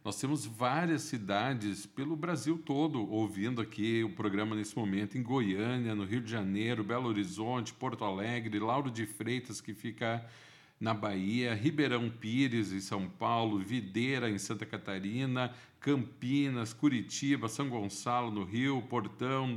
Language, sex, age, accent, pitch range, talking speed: Portuguese, male, 50-69, Brazilian, 115-160 Hz, 140 wpm